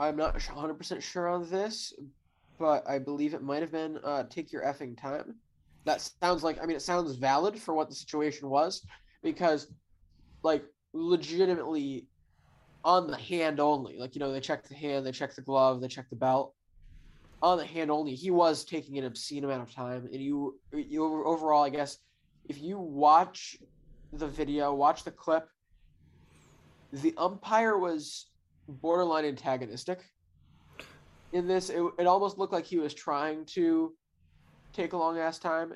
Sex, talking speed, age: male, 170 wpm, 20-39